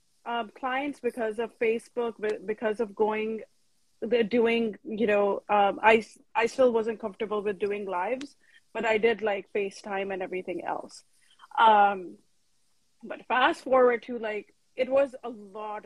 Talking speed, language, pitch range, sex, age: 150 wpm, English, 190-225 Hz, female, 30-49